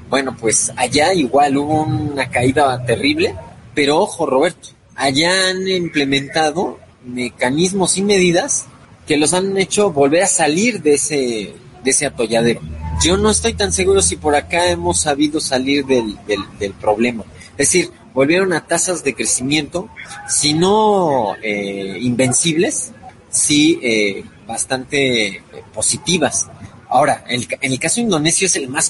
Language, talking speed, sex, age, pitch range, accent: Spanish, 140 wpm, male, 30-49, 115-155 Hz, Mexican